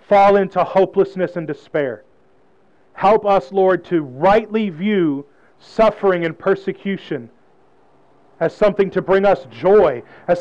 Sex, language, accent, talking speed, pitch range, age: male, English, American, 120 wpm, 175-215 Hz, 40-59